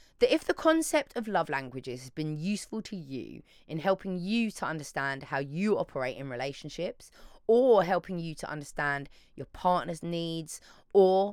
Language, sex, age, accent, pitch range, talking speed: English, female, 20-39, British, 155-220 Hz, 165 wpm